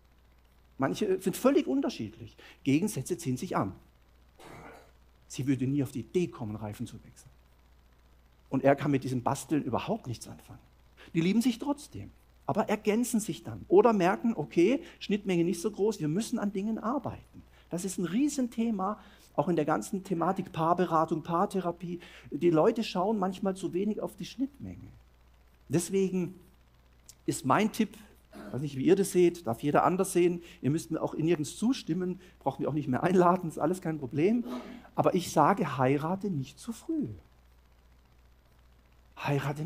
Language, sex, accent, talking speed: German, male, German, 160 wpm